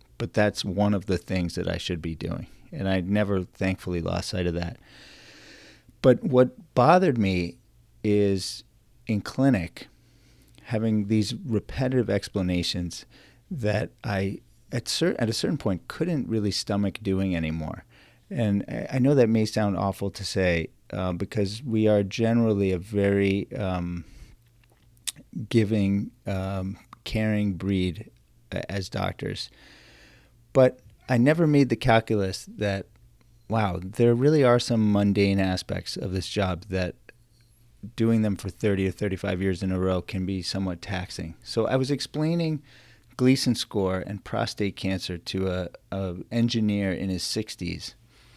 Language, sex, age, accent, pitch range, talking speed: English, male, 40-59, American, 95-115 Hz, 140 wpm